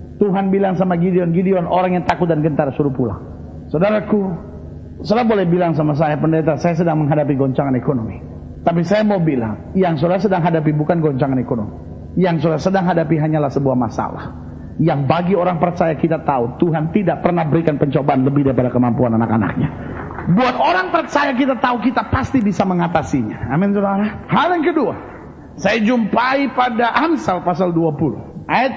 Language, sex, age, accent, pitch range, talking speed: Indonesian, male, 40-59, native, 150-205 Hz, 160 wpm